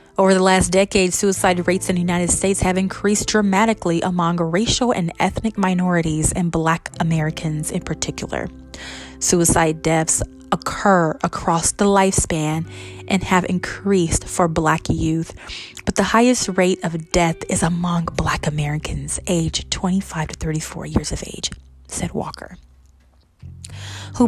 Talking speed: 135 wpm